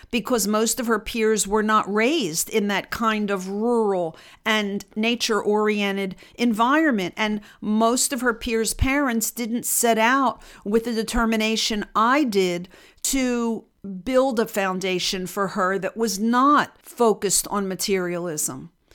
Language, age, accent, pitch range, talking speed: English, 50-69, American, 200-245 Hz, 135 wpm